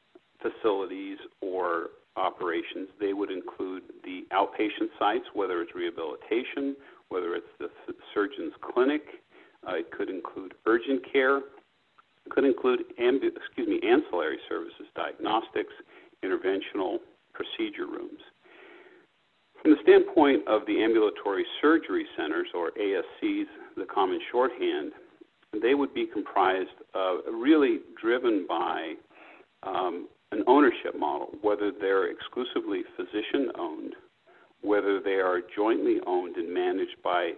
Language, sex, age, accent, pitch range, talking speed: English, male, 50-69, American, 340-390 Hz, 115 wpm